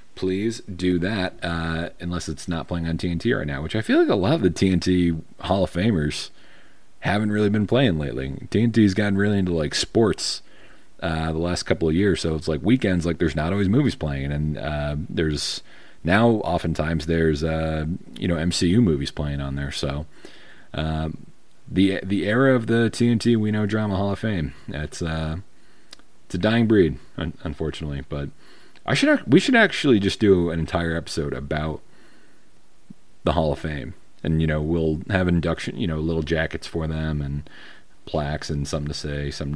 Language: English